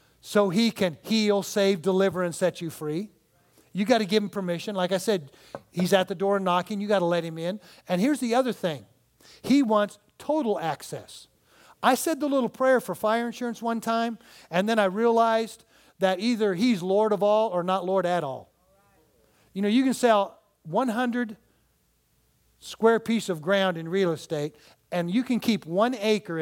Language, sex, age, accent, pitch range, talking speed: English, male, 40-59, American, 170-225 Hz, 190 wpm